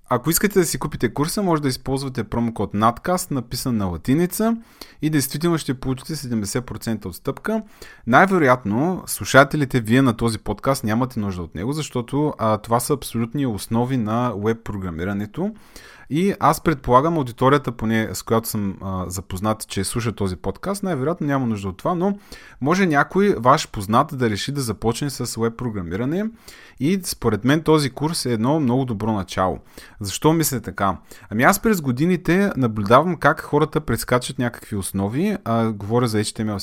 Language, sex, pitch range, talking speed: Bulgarian, male, 110-150 Hz, 160 wpm